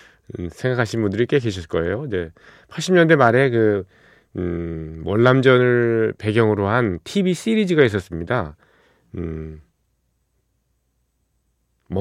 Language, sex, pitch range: Korean, male, 90-125 Hz